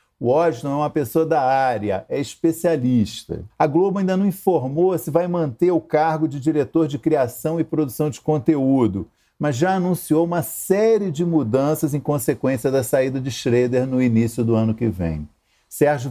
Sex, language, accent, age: male, Portuguese, Brazilian, 50-69